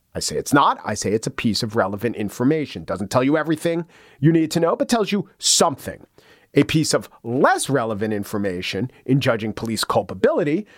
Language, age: English, 40-59